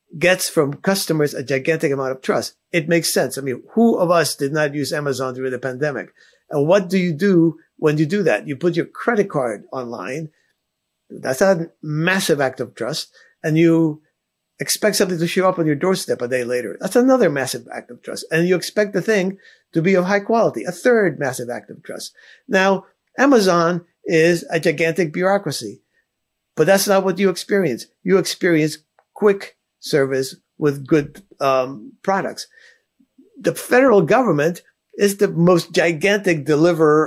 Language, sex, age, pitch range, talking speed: English, male, 50-69, 150-190 Hz, 175 wpm